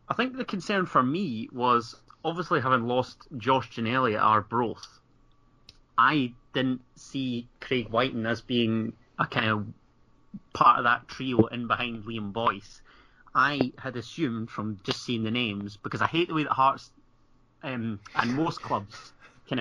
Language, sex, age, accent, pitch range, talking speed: English, male, 30-49, British, 115-135 Hz, 160 wpm